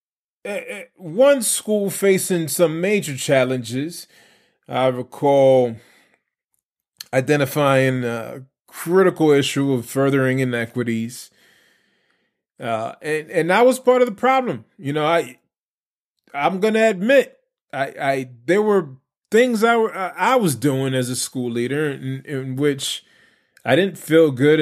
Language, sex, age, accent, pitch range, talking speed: English, male, 20-39, American, 130-185 Hz, 125 wpm